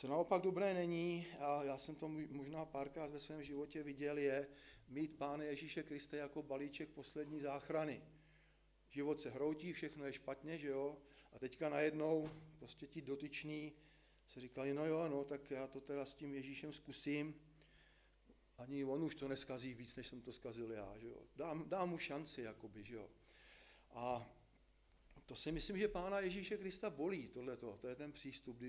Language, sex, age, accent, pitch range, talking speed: Czech, male, 40-59, native, 135-155 Hz, 175 wpm